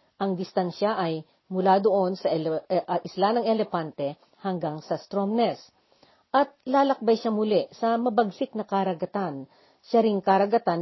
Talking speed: 130 wpm